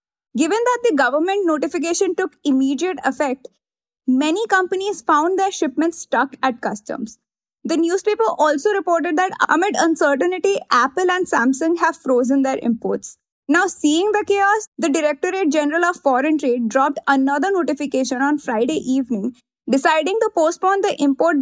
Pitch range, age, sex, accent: 265-360 Hz, 20-39, female, Indian